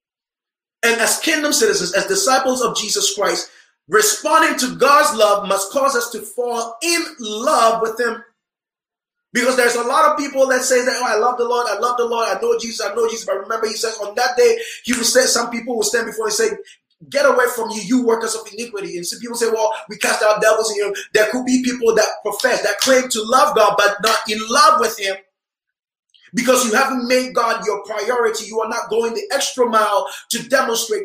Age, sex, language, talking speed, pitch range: 20-39, male, English, 225 wpm, 220-275 Hz